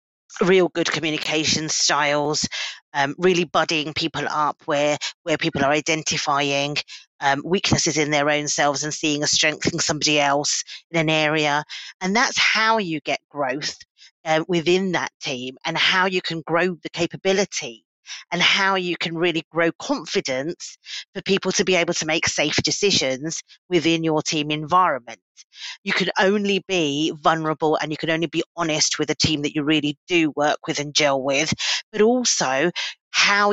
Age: 40-59